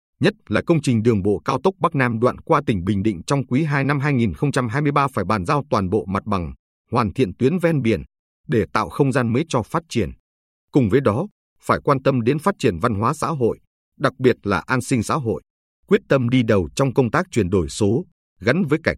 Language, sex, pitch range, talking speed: Vietnamese, male, 100-140 Hz, 230 wpm